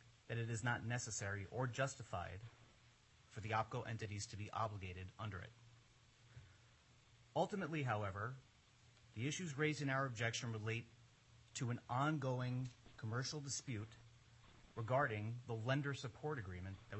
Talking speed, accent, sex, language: 125 wpm, American, male, English